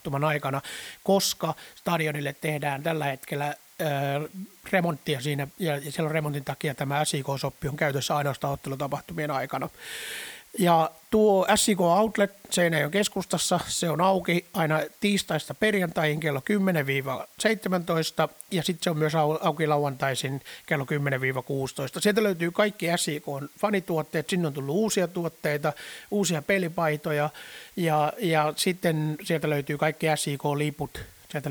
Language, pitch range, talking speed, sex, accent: Finnish, 145-185 Hz, 115 wpm, male, native